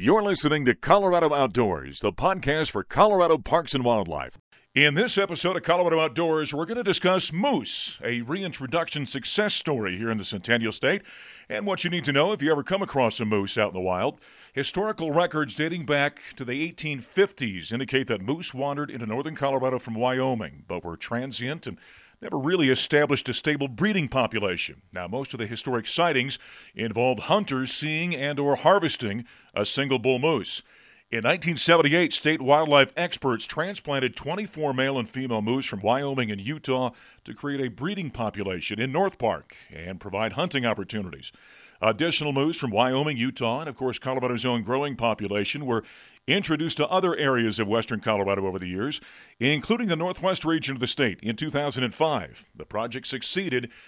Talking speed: 170 wpm